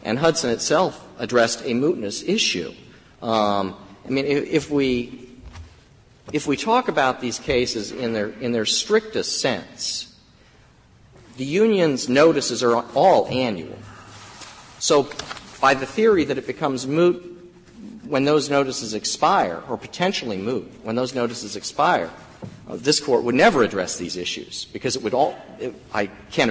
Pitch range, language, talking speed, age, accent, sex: 115-150 Hz, English, 145 wpm, 40-59, American, male